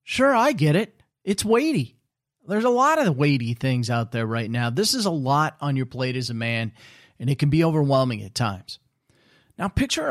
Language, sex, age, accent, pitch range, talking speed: English, male, 40-59, American, 125-155 Hz, 210 wpm